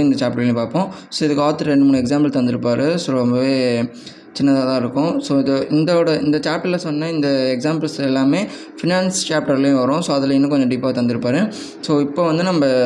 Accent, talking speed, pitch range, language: native, 250 wpm, 125-150 Hz, Tamil